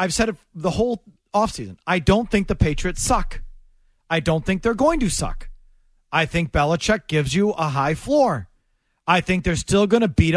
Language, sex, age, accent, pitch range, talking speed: English, male, 40-59, American, 165-215 Hz, 195 wpm